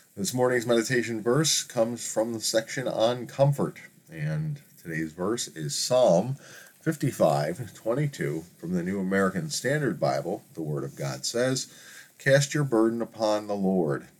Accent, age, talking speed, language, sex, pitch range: American, 40-59, 145 wpm, English, male, 95-145 Hz